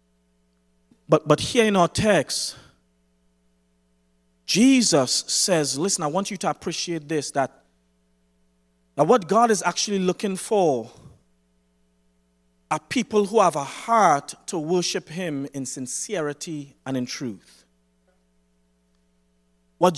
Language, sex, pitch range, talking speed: English, male, 180-265 Hz, 115 wpm